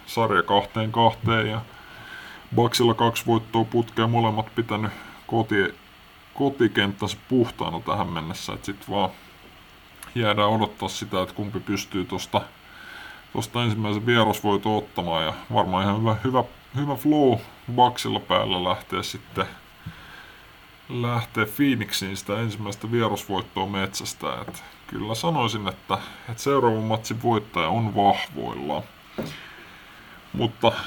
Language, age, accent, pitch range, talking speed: Finnish, 20-39, American, 95-115 Hz, 110 wpm